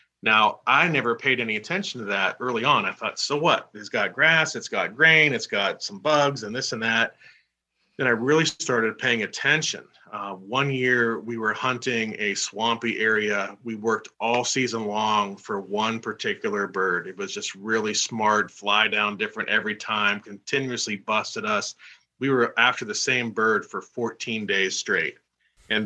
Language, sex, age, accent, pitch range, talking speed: English, male, 40-59, American, 110-140 Hz, 175 wpm